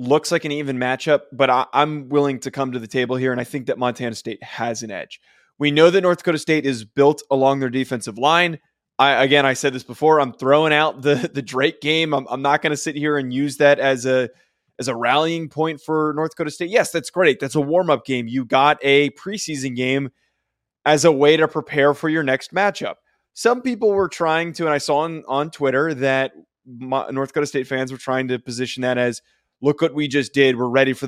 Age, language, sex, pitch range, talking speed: 20-39, English, male, 130-160 Hz, 235 wpm